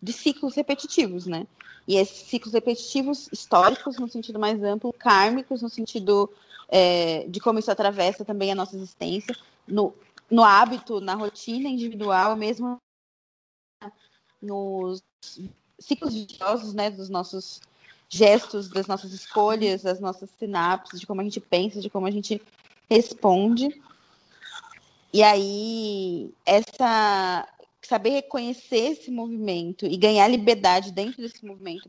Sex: female